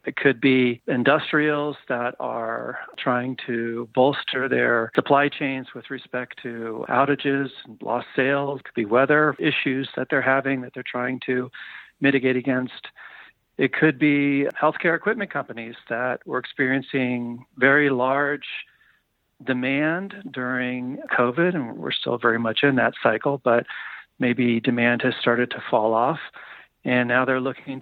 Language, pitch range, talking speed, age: English, 120-140 Hz, 145 wpm, 40-59